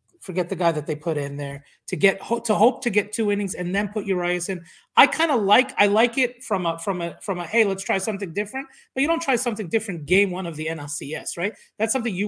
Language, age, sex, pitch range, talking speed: English, 30-49, male, 175-205 Hz, 265 wpm